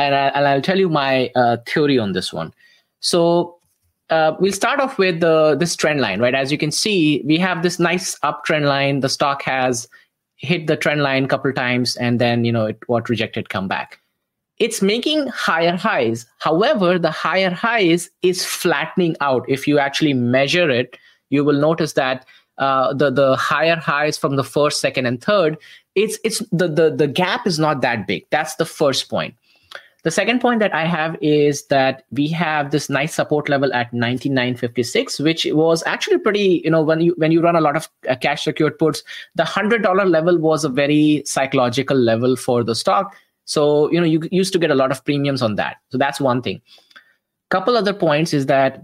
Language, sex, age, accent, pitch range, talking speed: English, male, 20-39, Indian, 135-170 Hz, 200 wpm